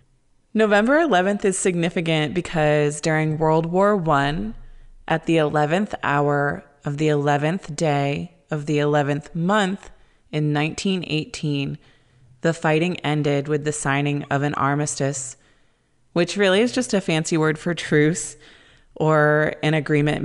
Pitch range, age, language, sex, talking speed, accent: 150-175 Hz, 20-39, English, female, 130 wpm, American